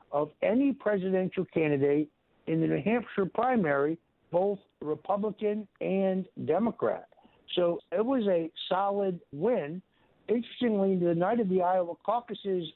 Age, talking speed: 60-79, 120 wpm